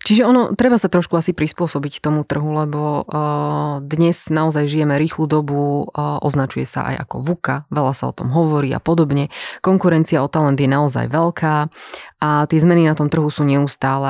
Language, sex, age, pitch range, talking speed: Slovak, female, 20-39, 140-160 Hz, 175 wpm